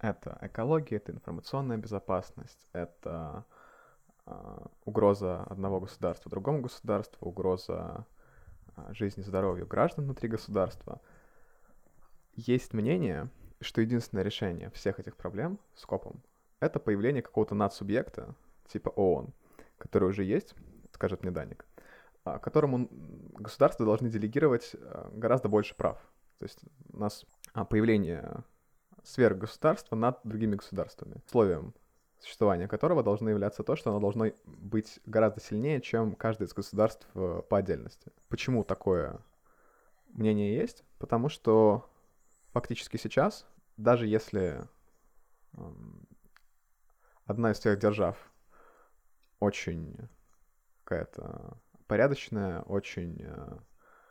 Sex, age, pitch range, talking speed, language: male, 20-39, 100-115 Hz, 100 wpm, Russian